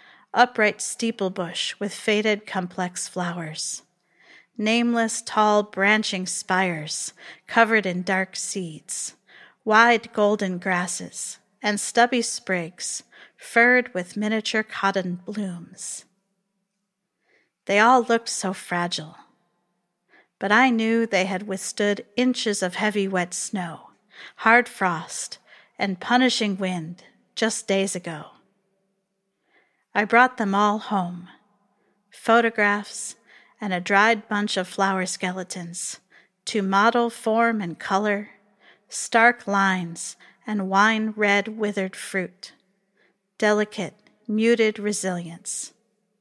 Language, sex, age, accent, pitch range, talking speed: English, female, 40-59, American, 185-220 Hz, 100 wpm